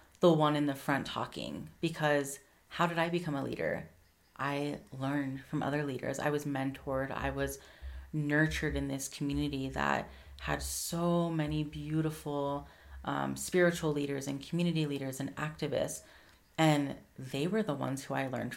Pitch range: 135-155 Hz